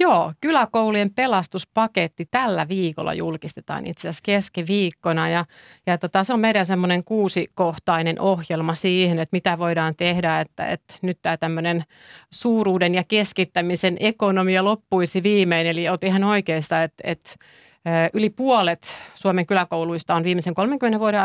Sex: female